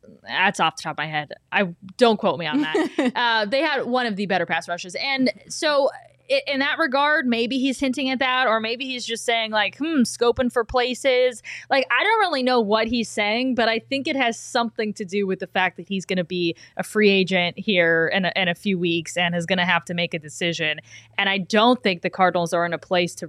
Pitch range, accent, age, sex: 185-235 Hz, American, 20-39, female